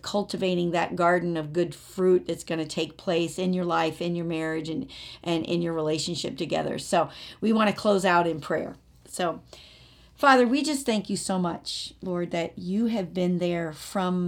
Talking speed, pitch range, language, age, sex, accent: 195 wpm, 175-200 Hz, English, 50-69, female, American